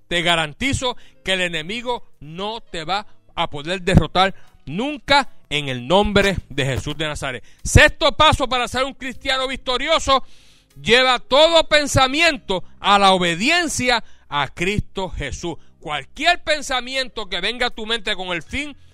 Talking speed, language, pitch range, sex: 145 wpm, Spanish, 195-275 Hz, male